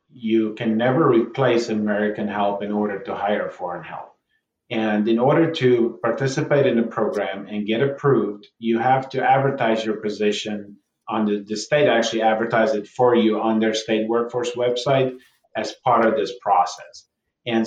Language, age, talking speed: English, 40-59, 165 wpm